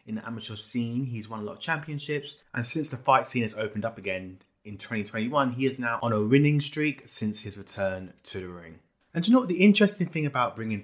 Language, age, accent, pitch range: English, 20-39, British, 100-135 Hz